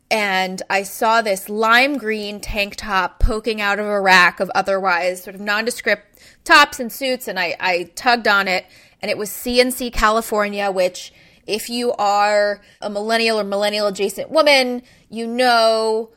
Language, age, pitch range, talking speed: English, 20-39, 190-225 Hz, 165 wpm